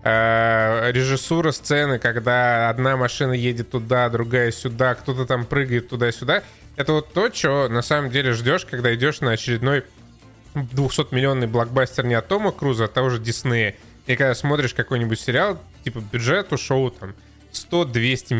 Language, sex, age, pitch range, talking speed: Russian, male, 20-39, 120-145 Hz, 145 wpm